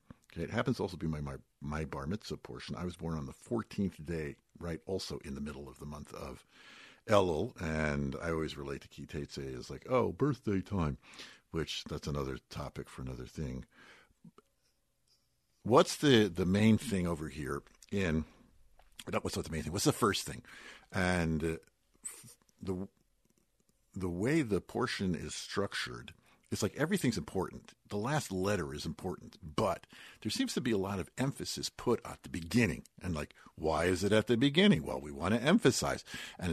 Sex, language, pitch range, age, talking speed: male, English, 75-115 Hz, 60-79, 175 wpm